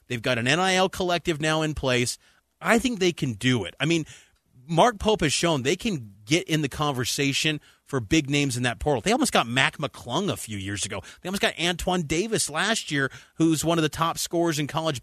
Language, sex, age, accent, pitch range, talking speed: English, male, 30-49, American, 135-180 Hz, 225 wpm